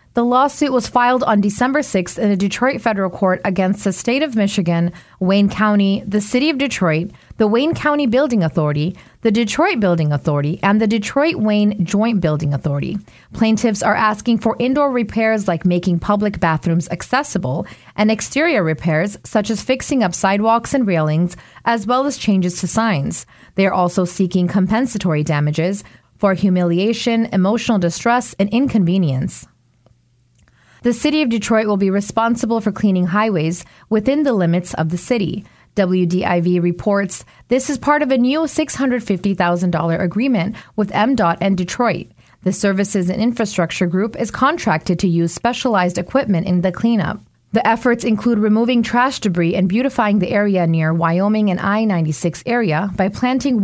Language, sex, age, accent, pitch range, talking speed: English, female, 30-49, American, 175-235 Hz, 155 wpm